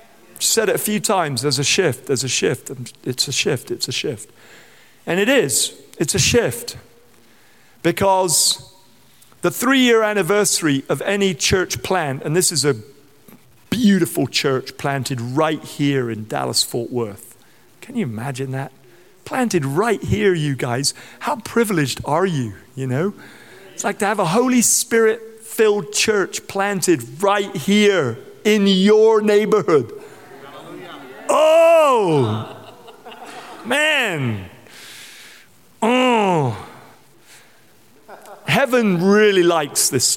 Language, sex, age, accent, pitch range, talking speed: English, male, 40-59, British, 135-205 Hz, 120 wpm